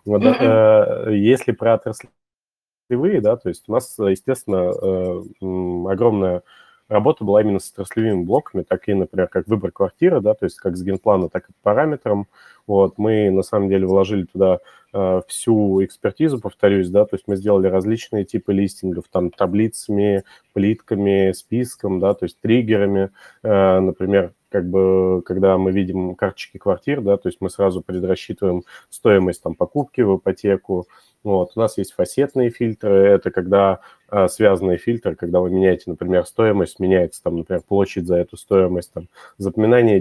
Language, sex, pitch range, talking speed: Russian, male, 95-105 Hz, 145 wpm